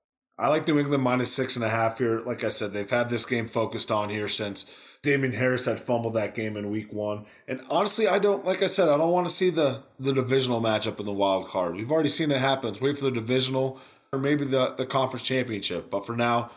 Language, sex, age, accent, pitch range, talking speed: English, male, 20-39, American, 110-135 Hz, 245 wpm